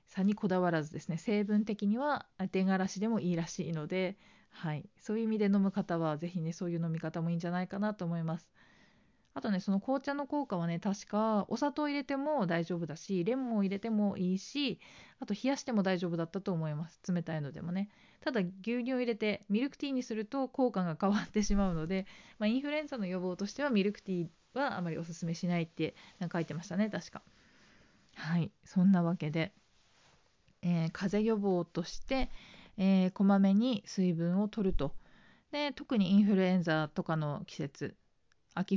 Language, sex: Japanese, female